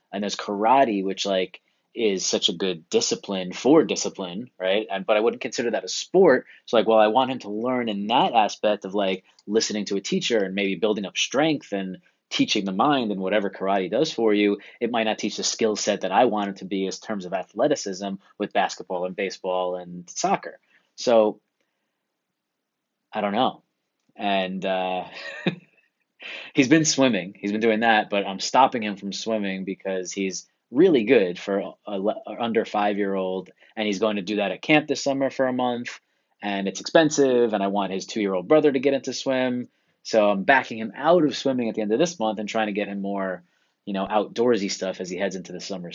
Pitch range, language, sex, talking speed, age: 95-115 Hz, English, male, 210 wpm, 30-49